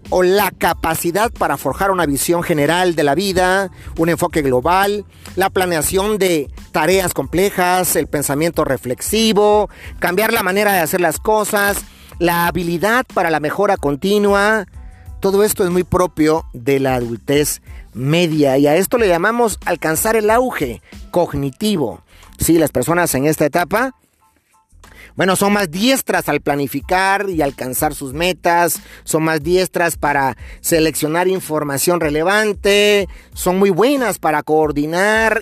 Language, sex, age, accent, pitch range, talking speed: Spanish, male, 40-59, Mexican, 150-200 Hz, 135 wpm